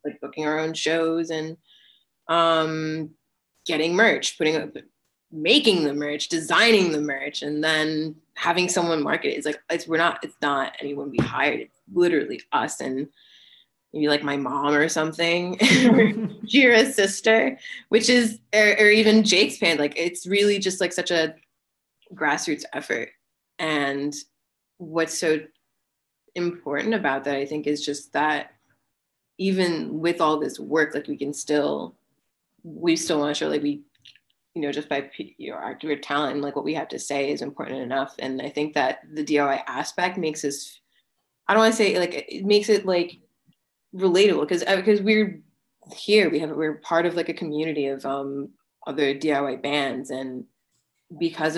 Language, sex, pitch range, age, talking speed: English, female, 145-180 Hz, 20-39, 165 wpm